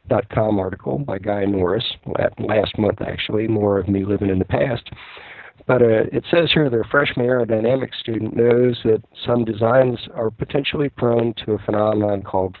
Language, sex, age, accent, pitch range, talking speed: English, male, 50-69, American, 100-125 Hz, 180 wpm